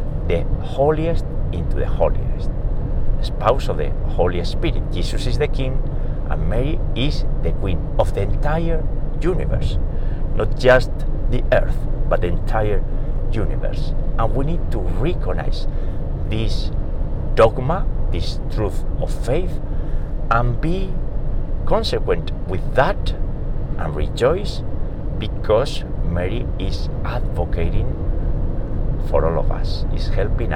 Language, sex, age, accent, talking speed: English, male, 60-79, Spanish, 115 wpm